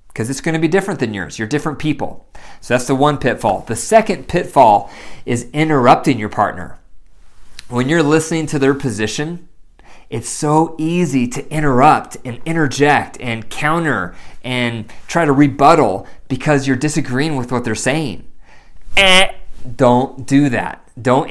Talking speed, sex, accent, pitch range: 150 wpm, male, American, 120-155 Hz